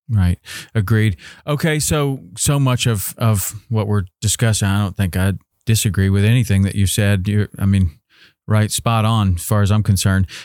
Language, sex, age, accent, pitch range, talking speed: English, male, 40-59, American, 100-115 Hz, 190 wpm